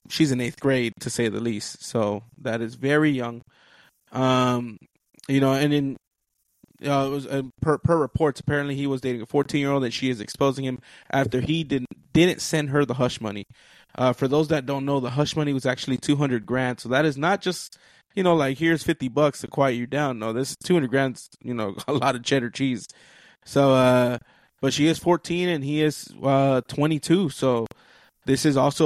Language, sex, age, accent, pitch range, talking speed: English, male, 20-39, American, 125-150 Hz, 210 wpm